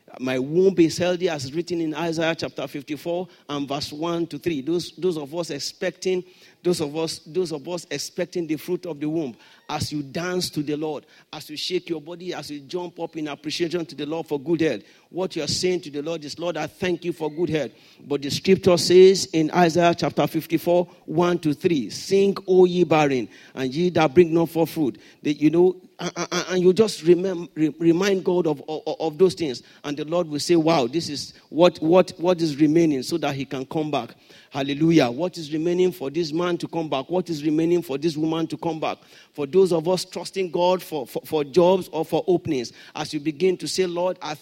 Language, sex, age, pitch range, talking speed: English, male, 50-69, 155-180 Hz, 215 wpm